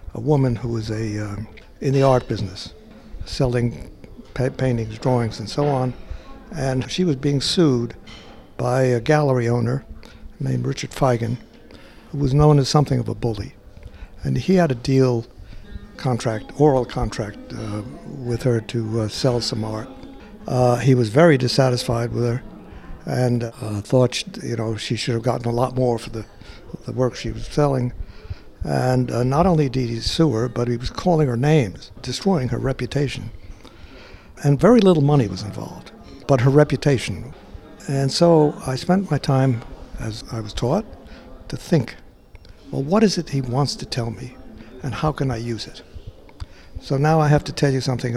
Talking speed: 175 wpm